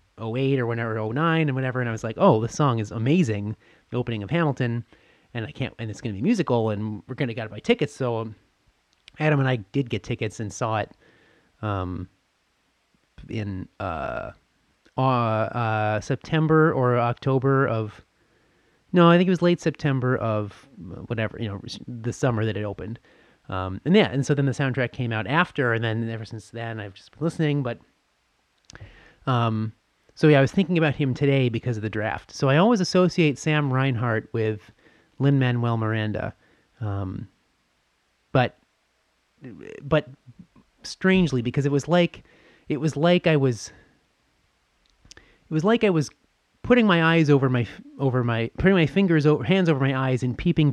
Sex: male